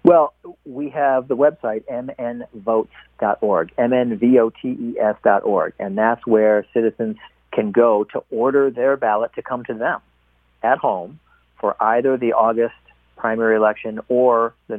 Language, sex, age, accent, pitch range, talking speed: English, male, 40-59, American, 100-120 Hz, 130 wpm